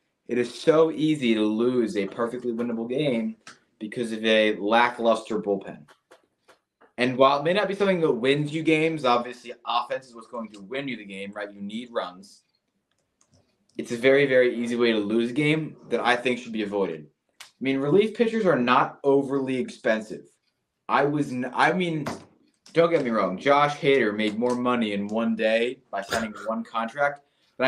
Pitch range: 110-145 Hz